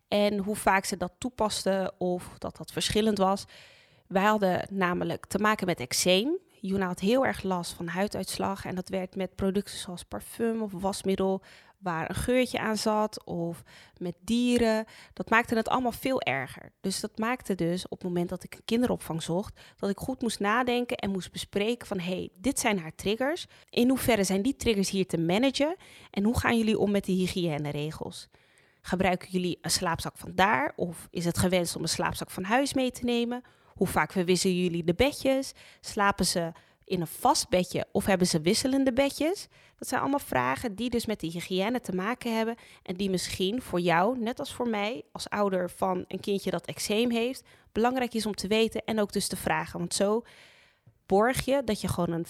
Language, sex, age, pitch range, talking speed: Dutch, female, 20-39, 180-230 Hz, 200 wpm